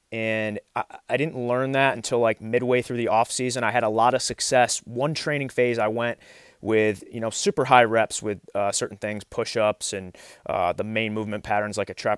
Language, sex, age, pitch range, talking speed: English, male, 30-49, 100-125 Hz, 210 wpm